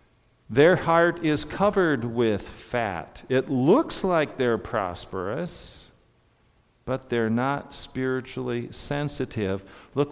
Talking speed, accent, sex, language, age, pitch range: 100 wpm, American, male, English, 50-69, 100-140 Hz